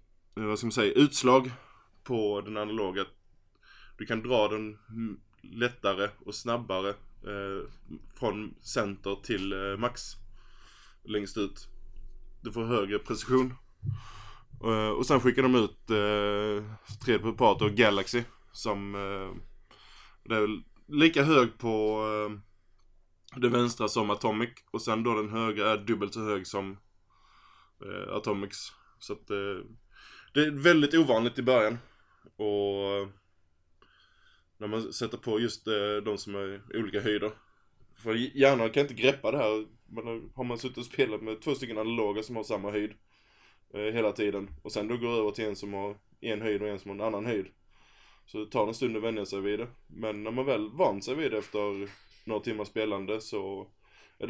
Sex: male